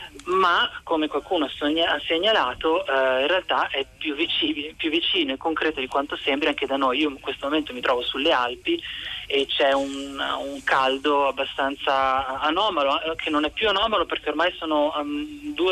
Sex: male